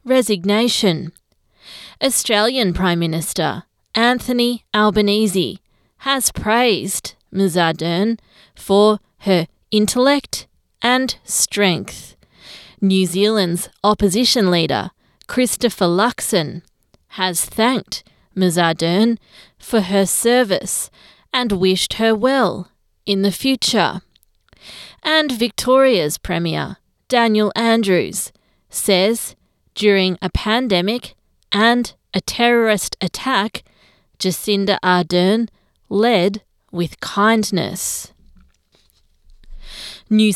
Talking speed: 80 wpm